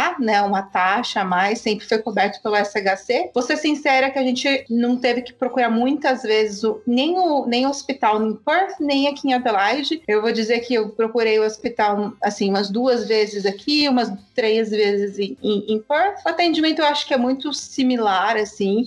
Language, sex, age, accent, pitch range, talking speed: Portuguese, female, 30-49, Brazilian, 210-260 Hz, 200 wpm